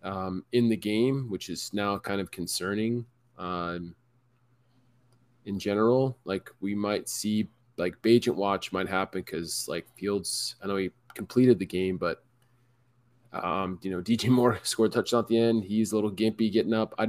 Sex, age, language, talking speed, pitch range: male, 20-39, English, 170 wpm, 105-125 Hz